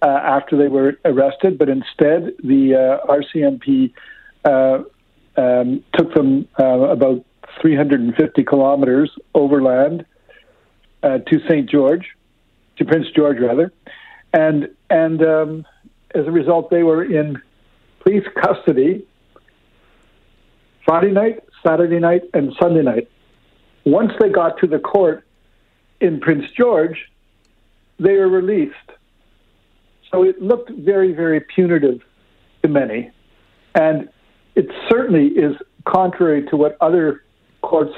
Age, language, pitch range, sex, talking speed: 60-79, English, 135-170 Hz, male, 120 wpm